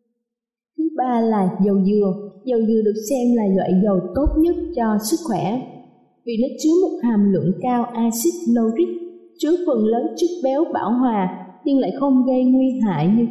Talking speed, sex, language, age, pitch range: 180 wpm, female, Vietnamese, 20-39, 205-270 Hz